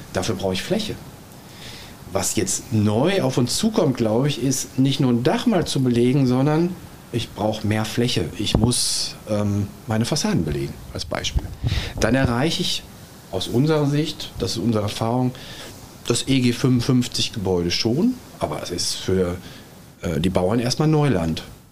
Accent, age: German, 40-59